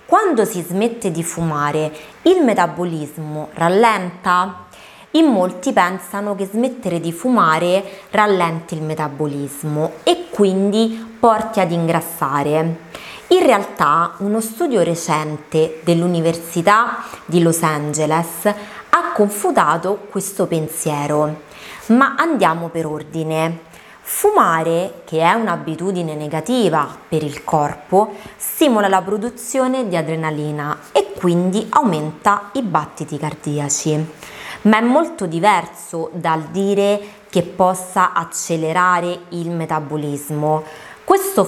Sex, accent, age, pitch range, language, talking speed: female, native, 20-39, 160-210 Hz, Italian, 105 wpm